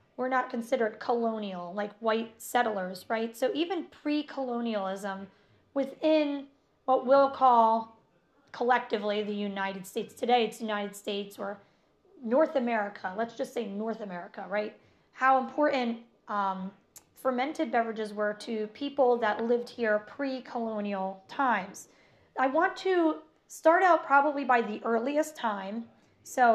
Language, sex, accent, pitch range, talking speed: English, female, American, 210-265 Hz, 125 wpm